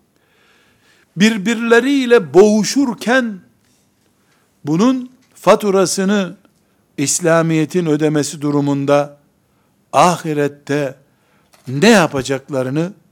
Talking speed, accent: 45 wpm, native